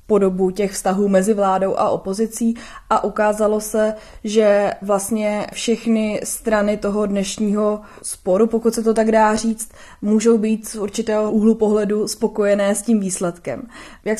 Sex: female